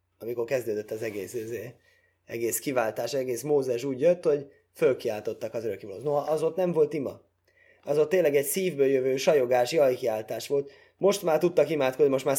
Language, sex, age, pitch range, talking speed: Hungarian, male, 20-39, 105-165 Hz, 175 wpm